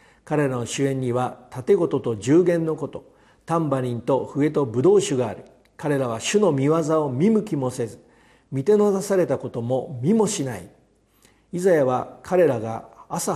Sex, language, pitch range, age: male, Japanese, 125-175 Hz, 50-69